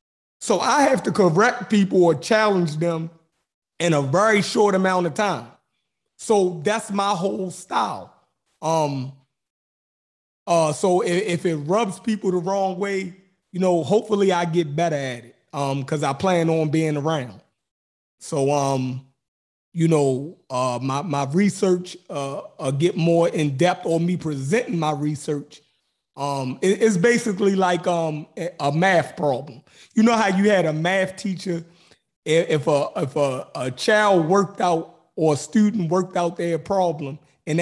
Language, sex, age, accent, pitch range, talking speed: English, male, 30-49, American, 150-190 Hz, 160 wpm